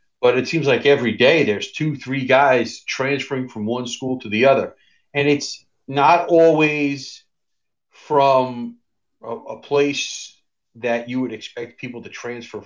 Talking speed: 150 wpm